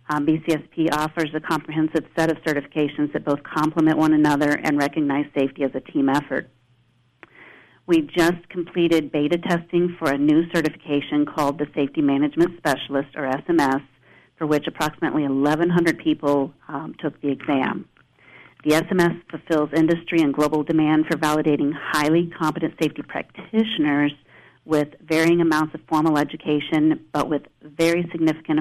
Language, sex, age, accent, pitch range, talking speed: English, female, 40-59, American, 145-165 Hz, 145 wpm